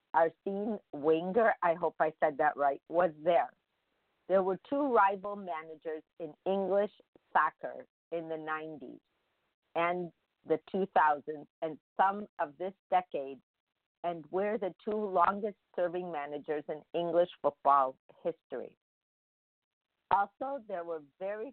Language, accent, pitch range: English, American, 155-190 Hz